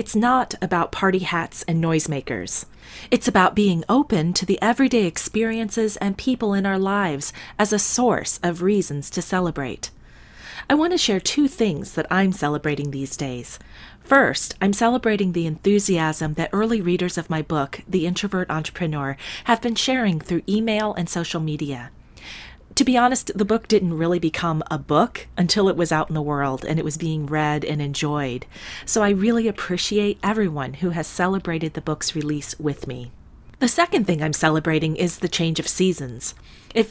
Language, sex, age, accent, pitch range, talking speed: English, female, 30-49, American, 150-200 Hz, 175 wpm